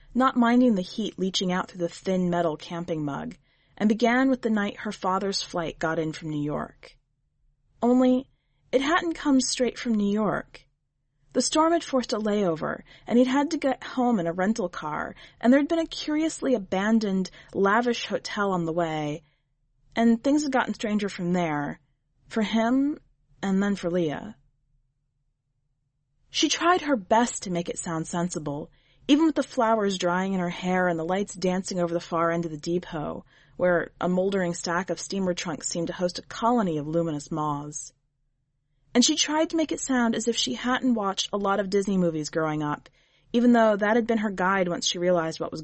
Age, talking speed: 30-49, 195 wpm